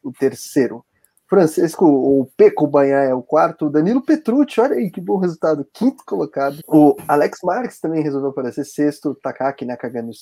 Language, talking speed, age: Portuguese, 175 wpm, 20-39